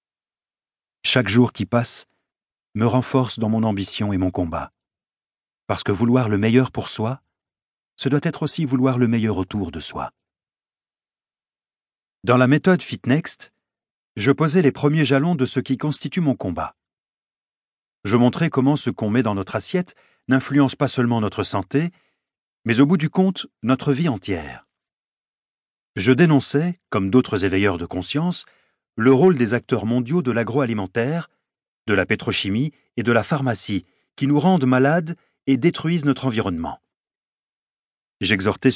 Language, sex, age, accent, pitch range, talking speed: French, male, 50-69, French, 110-145 Hz, 150 wpm